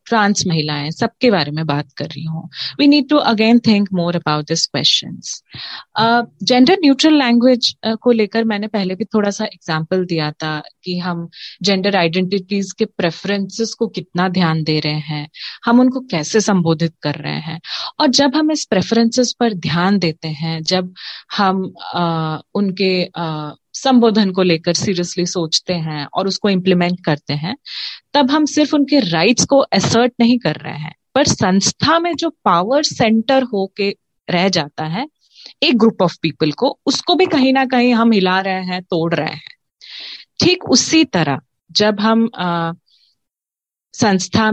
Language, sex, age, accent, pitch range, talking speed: English, female, 30-49, Indian, 170-235 Hz, 110 wpm